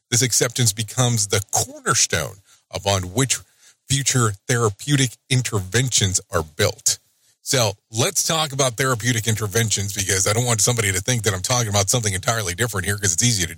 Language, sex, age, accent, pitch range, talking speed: English, male, 40-59, American, 105-135 Hz, 165 wpm